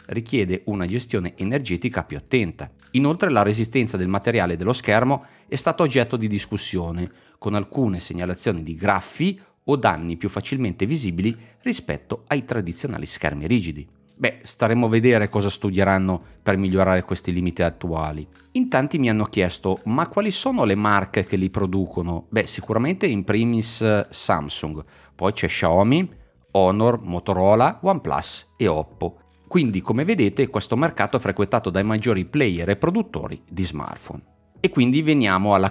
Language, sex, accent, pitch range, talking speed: Italian, male, native, 90-120 Hz, 150 wpm